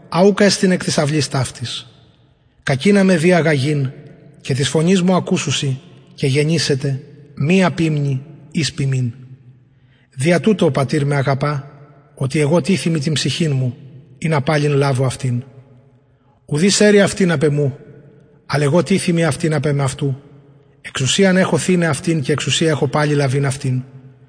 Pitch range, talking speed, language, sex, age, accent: 135-160 Hz, 140 wpm, English, male, 30-49, Greek